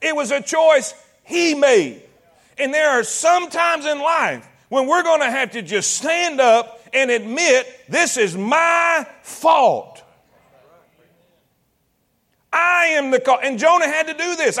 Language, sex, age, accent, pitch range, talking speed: English, male, 40-59, American, 235-305 Hz, 155 wpm